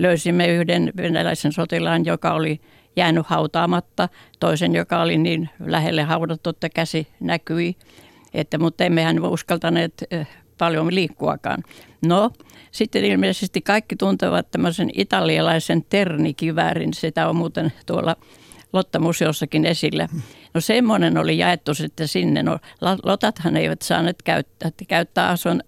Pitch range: 160-185 Hz